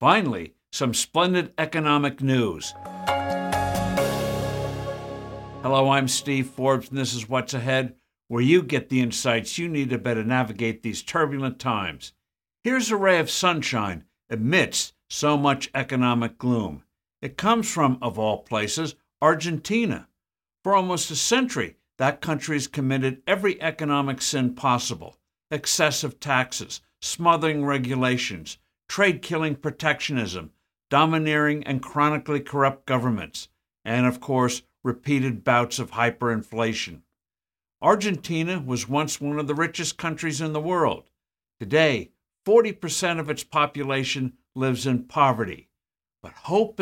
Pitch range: 125-155 Hz